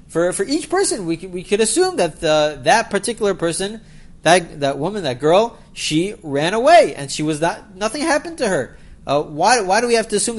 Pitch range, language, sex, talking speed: 155-235 Hz, English, male, 220 wpm